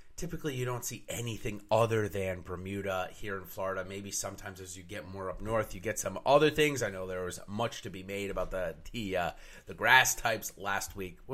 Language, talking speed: English, 220 wpm